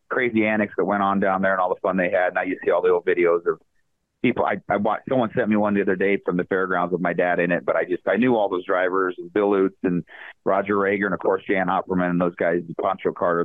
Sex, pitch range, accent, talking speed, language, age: male, 95-115 Hz, American, 285 wpm, English, 30-49